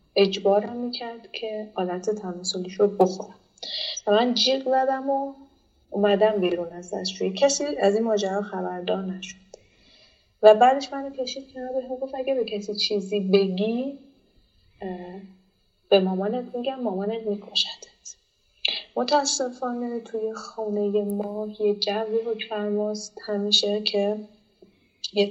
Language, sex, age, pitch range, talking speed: Persian, female, 30-49, 195-225 Hz, 120 wpm